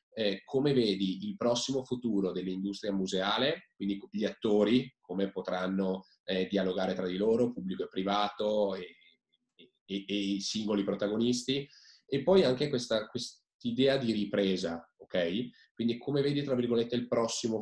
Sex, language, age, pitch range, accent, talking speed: male, Italian, 20-39, 95-125 Hz, native, 145 wpm